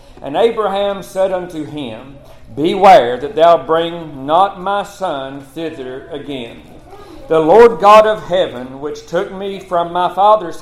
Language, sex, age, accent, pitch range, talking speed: English, male, 50-69, American, 155-200 Hz, 140 wpm